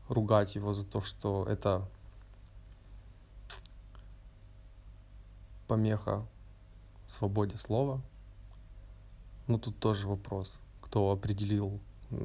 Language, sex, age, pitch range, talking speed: Russian, male, 20-39, 100-110 Hz, 75 wpm